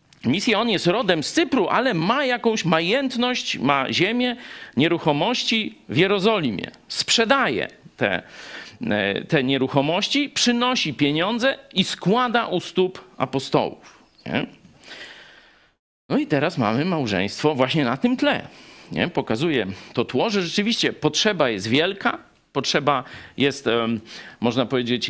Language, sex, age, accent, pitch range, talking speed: Polish, male, 50-69, native, 155-235 Hz, 115 wpm